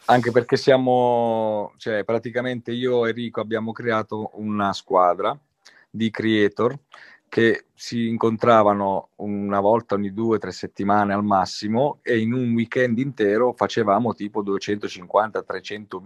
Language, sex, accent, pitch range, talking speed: Italian, male, native, 105-130 Hz, 125 wpm